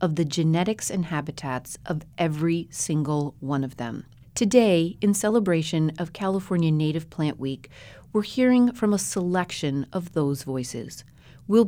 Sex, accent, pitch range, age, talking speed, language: female, American, 135-195 Hz, 30-49, 145 wpm, English